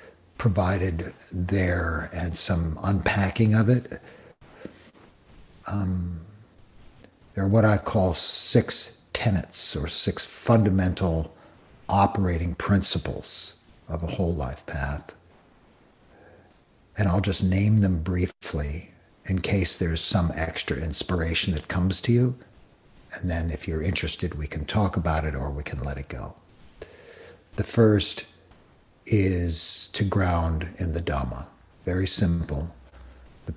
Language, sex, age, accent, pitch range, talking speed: English, male, 60-79, American, 80-100 Hz, 120 wpm